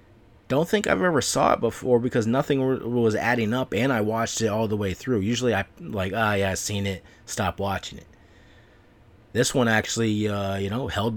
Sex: male